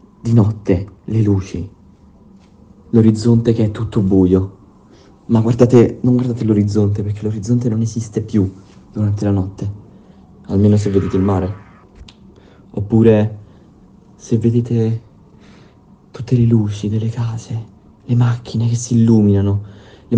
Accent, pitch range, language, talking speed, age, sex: native, 100-115 Hz, Italian, 120 wpm, 40-59, male